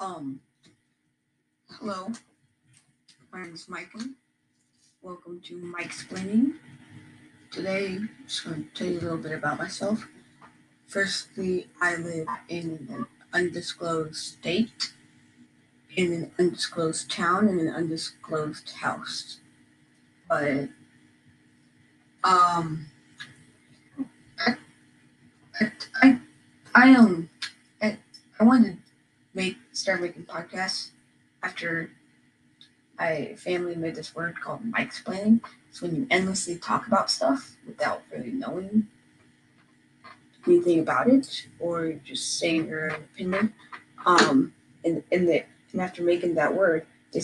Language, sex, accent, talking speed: English, female, American, 115 wpm